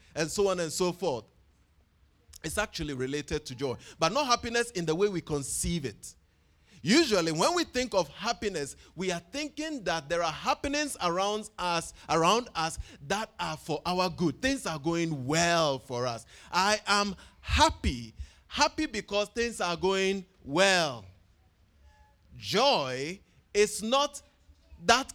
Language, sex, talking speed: English, male, 145 wpm